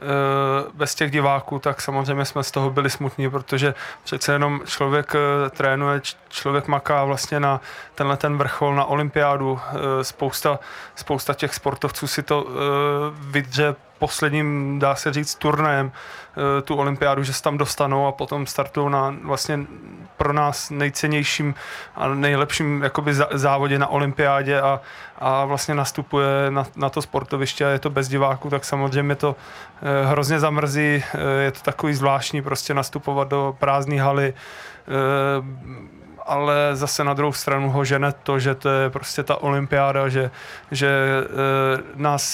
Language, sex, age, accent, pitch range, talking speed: Czech, male, 20-39, native, 140-145 Hz, 140 wpm